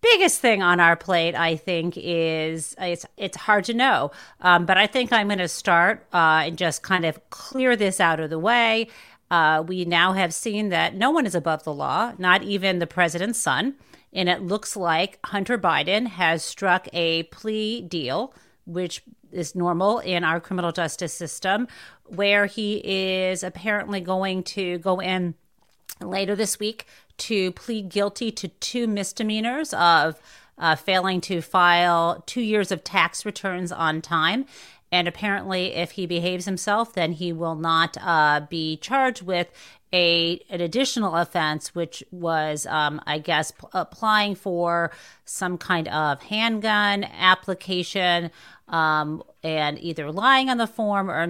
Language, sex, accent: English, female, American